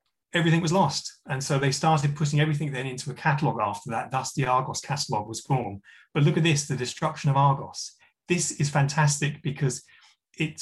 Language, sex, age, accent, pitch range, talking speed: English, male, 30-49, British, 130-155 Hz, 190 wpm